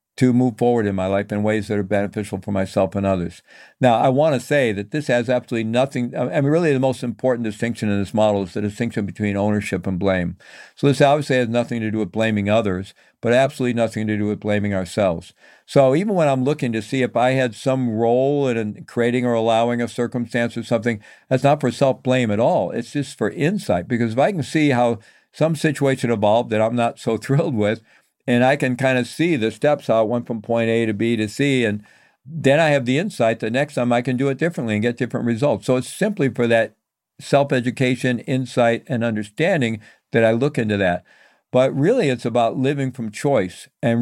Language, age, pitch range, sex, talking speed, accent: English, 50-69, 105-130 Hz, male, 220 wpm, American